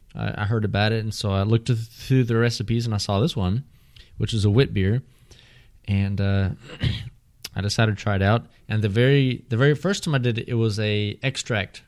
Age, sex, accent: 20-39, male, American